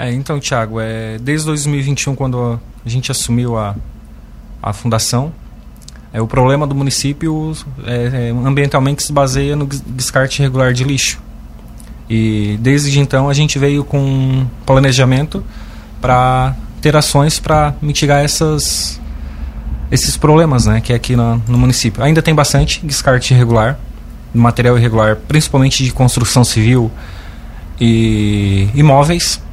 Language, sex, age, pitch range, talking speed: Portuguese, male, 20-39, 115-140 Hz, 130 wpm